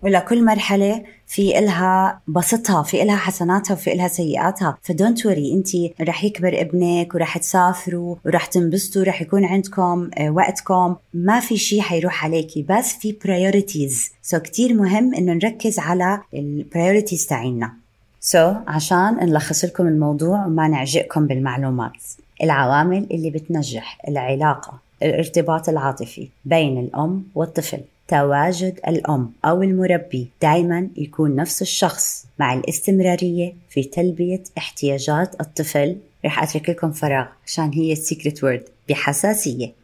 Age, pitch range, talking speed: 20-39, 150-190 Hz, 125 wpm